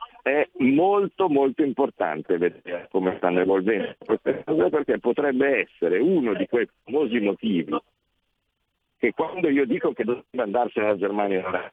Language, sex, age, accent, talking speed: Italian, male, 50-69, native, 140 wpm